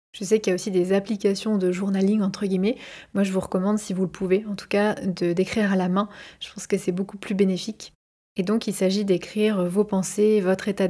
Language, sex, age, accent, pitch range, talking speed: French, female, 20-39, French, 190-215 Hz, 235 wpm